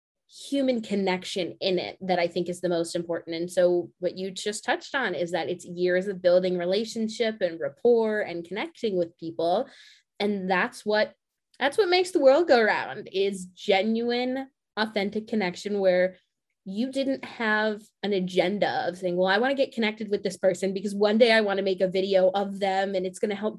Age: 20-39